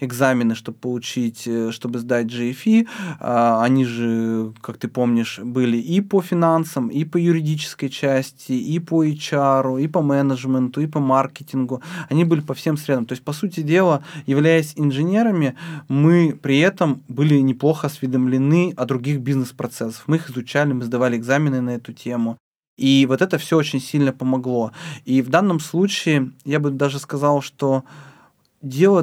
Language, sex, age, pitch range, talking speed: Russian, male, 20-39, 125-155 Hz, 155 wpm